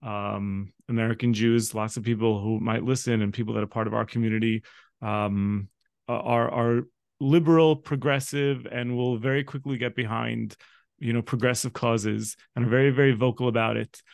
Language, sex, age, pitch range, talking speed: English, male, 30-49, 120-155 Hz, 165 wpm